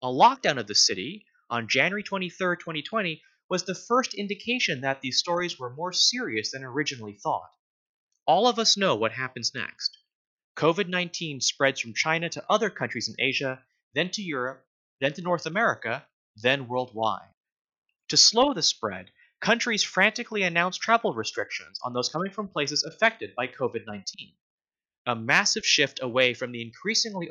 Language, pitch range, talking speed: English, 130-210 Hz, 155 wpm